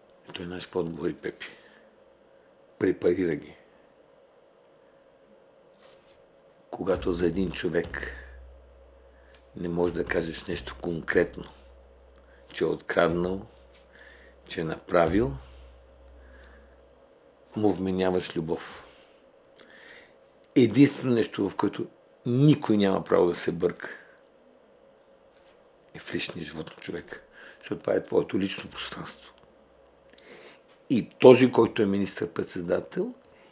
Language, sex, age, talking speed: Bulgarian, male, 60-79, 95 wpm